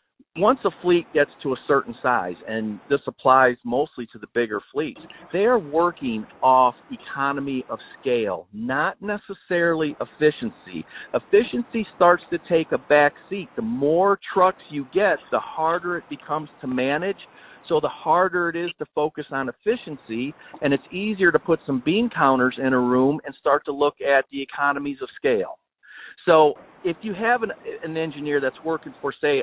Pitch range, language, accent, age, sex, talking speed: 140-185 Hz, English, American, 50-69, male, 170 wpm